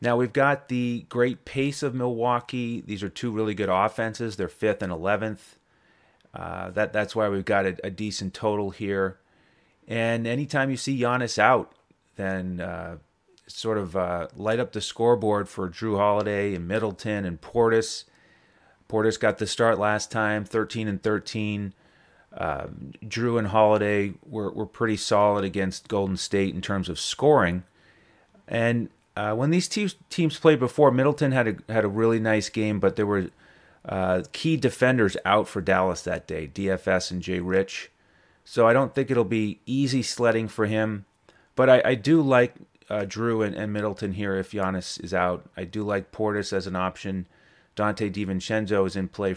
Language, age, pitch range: English, 30-49, 95-120 Hz